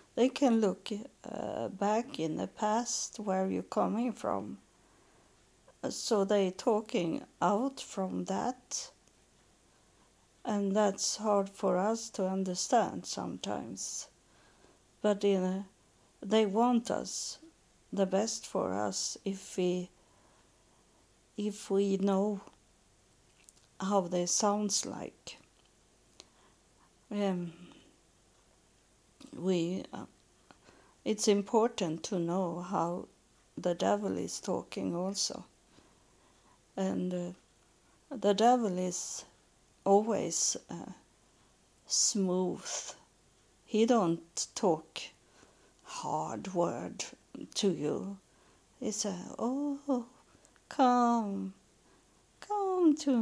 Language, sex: English, female